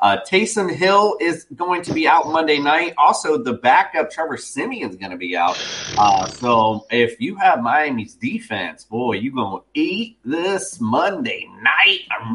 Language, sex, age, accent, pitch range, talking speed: English, male, 30-49, American, 120-190 Hz, 175 wpm